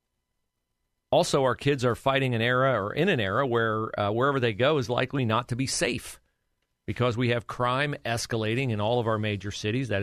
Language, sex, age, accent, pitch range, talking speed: English, male, 40-59, American, 110-140 Hz, 205 wpm